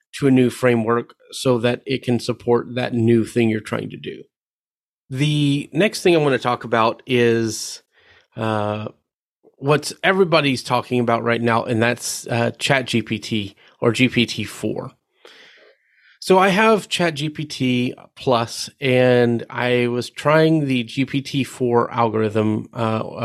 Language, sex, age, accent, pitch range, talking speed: English, male, 30-49, American, 120-150 Hz, 140 wpm